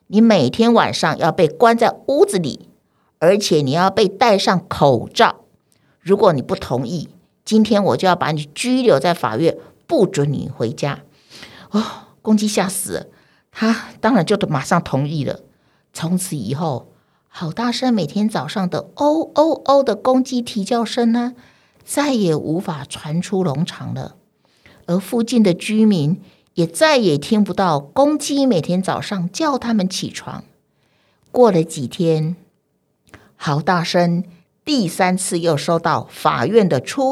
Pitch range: 170-230 Hz